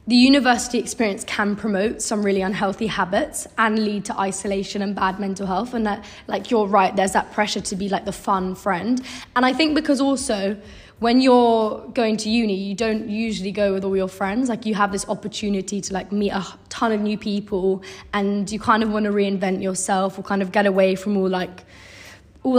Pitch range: 195-225 Hz